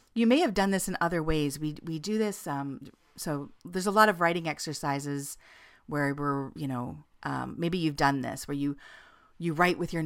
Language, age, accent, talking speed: English, 40-59, American, 210 wpm